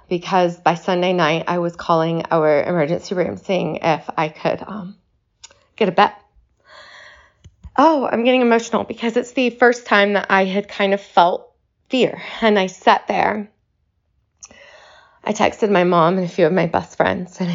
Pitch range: 165-200 Hz